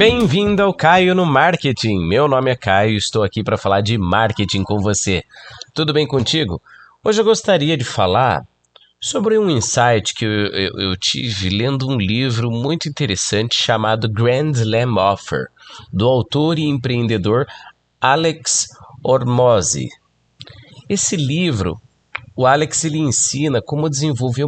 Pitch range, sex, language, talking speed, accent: 105-150 Hz, male, Portuguese, 135 wpm, Brazilian